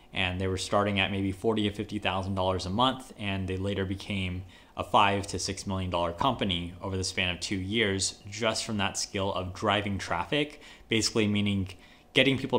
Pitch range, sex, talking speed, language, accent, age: 95-115 Hz, male, 180 wpm, English, American, 20-39